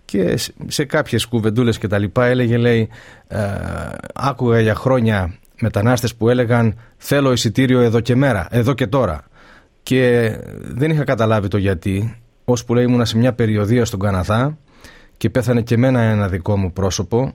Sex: male